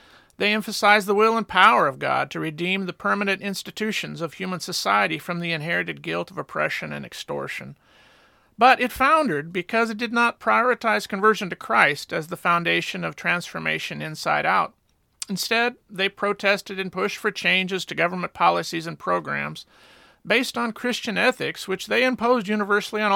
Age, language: 40-59, English